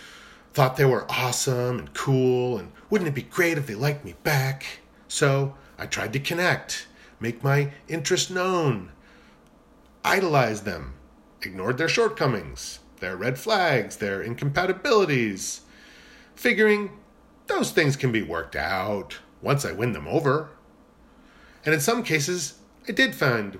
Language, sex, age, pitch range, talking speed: English, male, 40-59, 110-160 Hz, 135 wpm